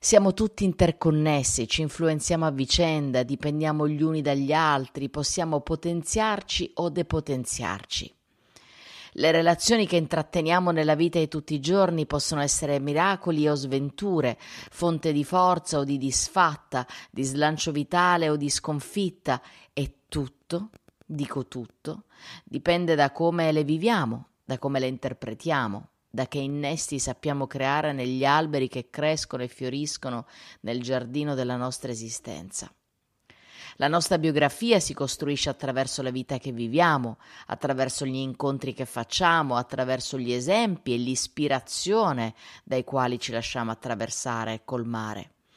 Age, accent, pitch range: 30-49, Italian, 125-155 Hz